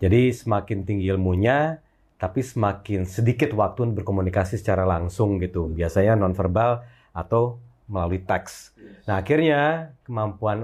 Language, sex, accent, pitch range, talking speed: Indonesian, male, native, 95-120 Hz, 120 wpm